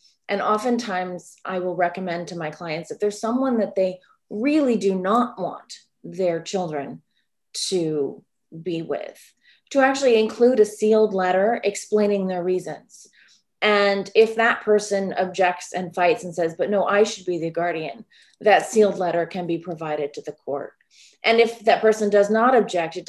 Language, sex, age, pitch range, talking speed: English, female, 30-49, 175-220 Hz, 165 wpm